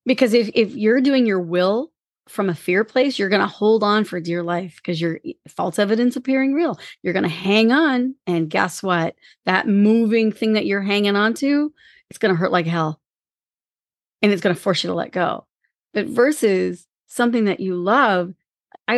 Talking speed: 200 wpm